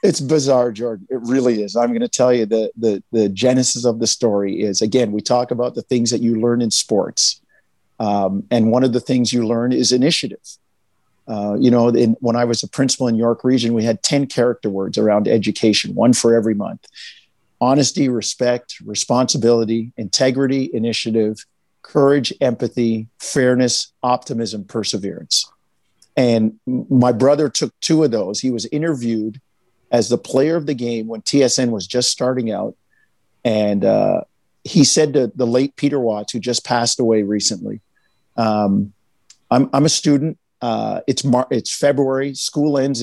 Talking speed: 170 wpm